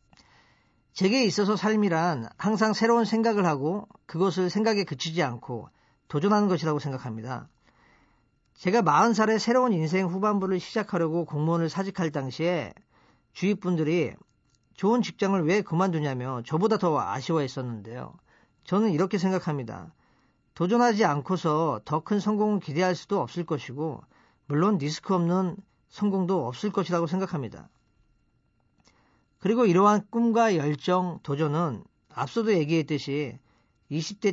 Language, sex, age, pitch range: Korean, male, 40-59, 150-200 Hz